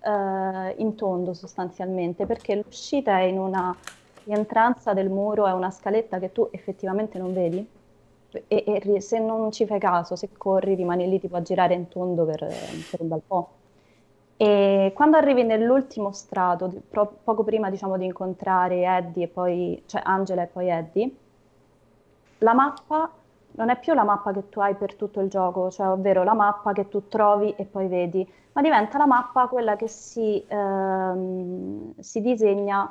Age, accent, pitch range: 20-39, native, 185-215 Hz